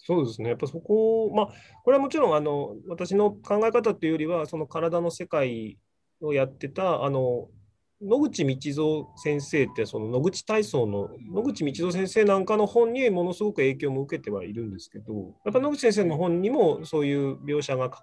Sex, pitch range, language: male, 130-210 Hz, Japanese